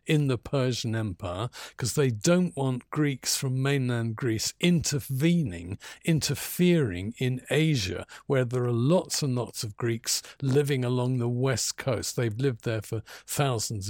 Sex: male